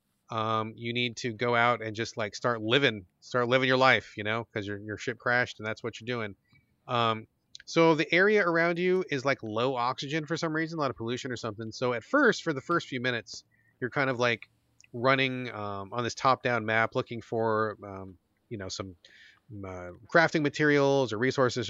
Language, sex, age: English, male, 30-49